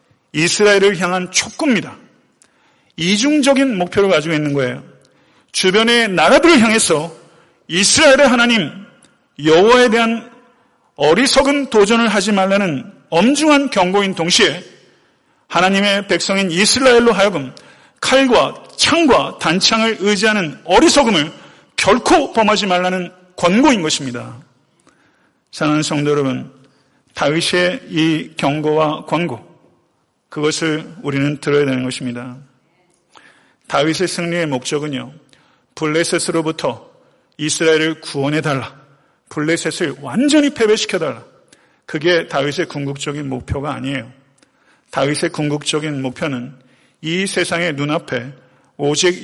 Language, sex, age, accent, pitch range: Korean, male, 40-59, native, 145-200 Hz